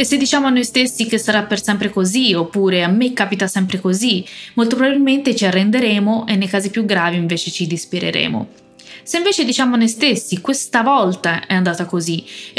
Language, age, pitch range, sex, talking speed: Italian, 20-39, 185-240 Hz, female, 190 wpm